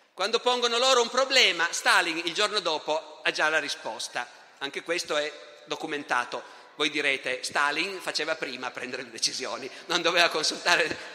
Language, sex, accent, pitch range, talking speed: Italian, male, native, 150-195 Hz, 155 wpm